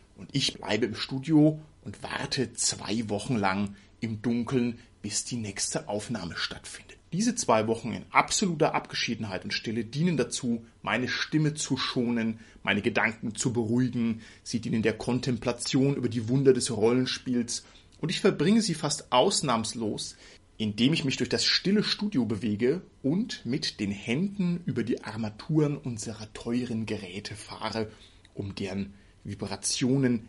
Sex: male